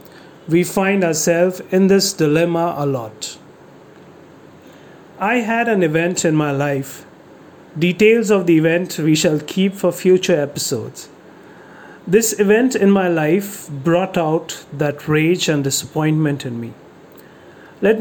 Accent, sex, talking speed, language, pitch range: Indian, male, 130 wpm, English, 150-190 Hz